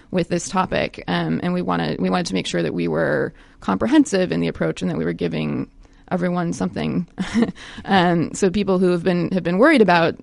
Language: English